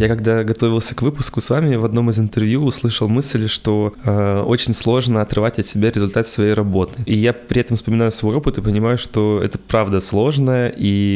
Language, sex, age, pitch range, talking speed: Russian, male, 20-39, 100-120 Hz, 200 wpm